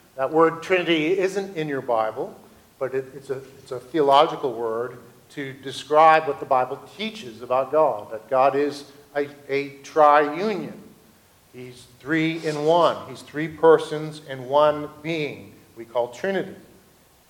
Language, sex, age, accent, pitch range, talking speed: English, male, 50-69, American, 130-160 Hz, 145 wpm